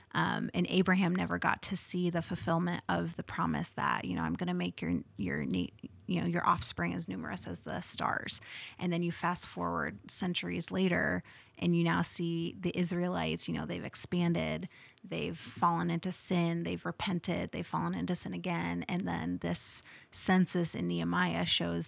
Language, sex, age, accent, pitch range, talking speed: English, female, 30-49, American, 125-185 Hz, 180 wpm